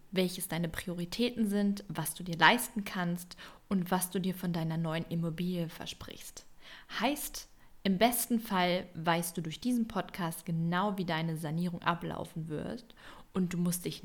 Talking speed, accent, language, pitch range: 160 wpm, German, German, 165-200 Hz